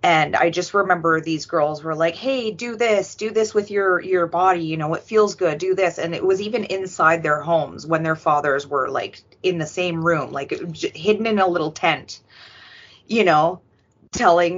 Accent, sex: American, female